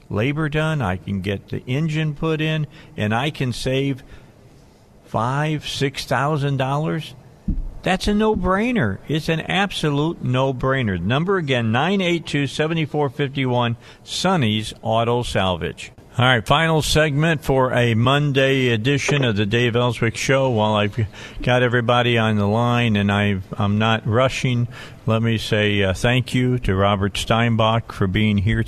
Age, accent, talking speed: 50-69, American, 130 wpm